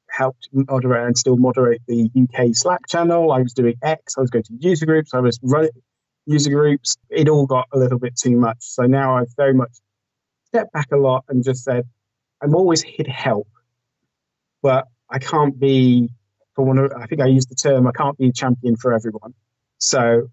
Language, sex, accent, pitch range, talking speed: English, male, British, 120-140 Hz, 205 wpm